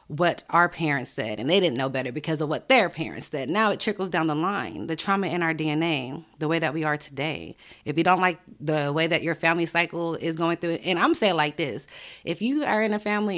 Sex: female